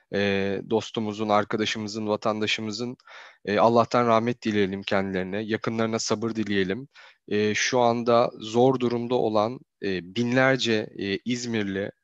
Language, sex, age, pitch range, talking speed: Turkish, male, 30-49, 105-135 Hz, 85 wpm